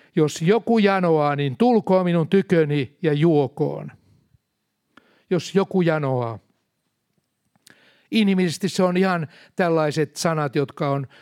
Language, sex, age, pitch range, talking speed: Finnish, male, 60-79, 145-190 Hz, 105 wpm